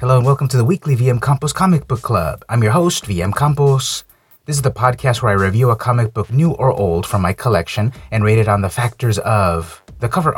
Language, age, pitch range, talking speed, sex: English, 30-49, 105-145 Hz, 235 wpm, male